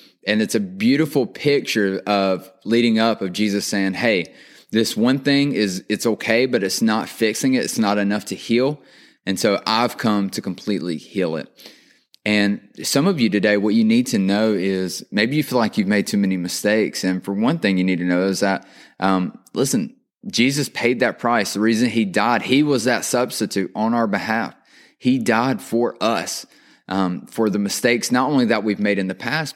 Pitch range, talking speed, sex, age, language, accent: 100-125 Hz, 200 wpm, male, 20-39, English, American